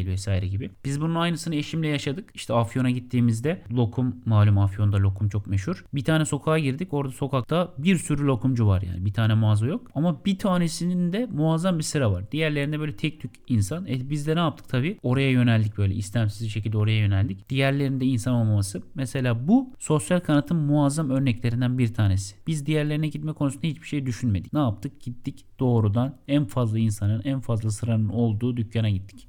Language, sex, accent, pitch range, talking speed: Turkish, male, native, 115-155 Hz, 180 wpm